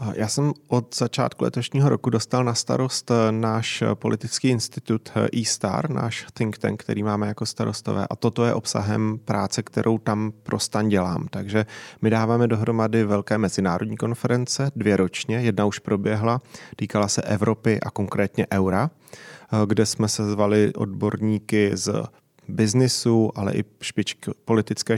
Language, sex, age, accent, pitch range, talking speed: Czech, male, 30-49, native, 105-115 Hz, 140 wpm